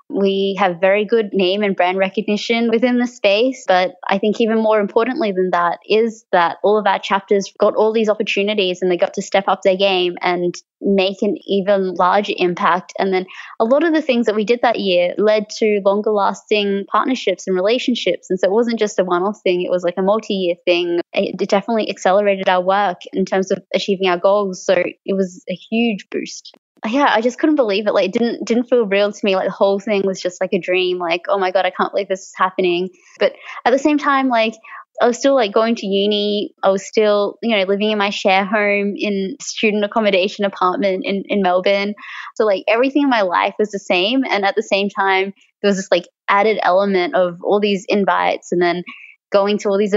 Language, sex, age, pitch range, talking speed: English, female, 20-39, 190-225 Hz, 225 wpm